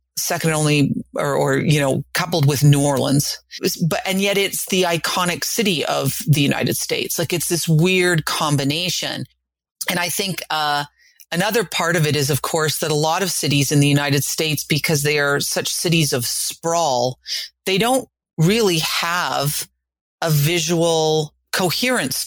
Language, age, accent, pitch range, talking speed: English, 40-59, American, 145-180 Hz, 165 wpm